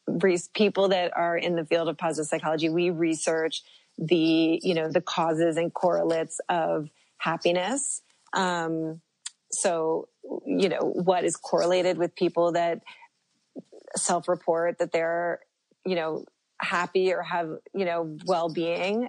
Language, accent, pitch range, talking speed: English, American, 170-195 Hz, 130 wpm